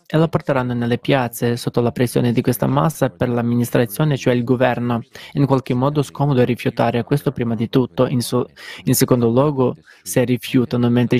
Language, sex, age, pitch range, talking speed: Italian, male, 20-39, 120-140 Hz, 180 wpm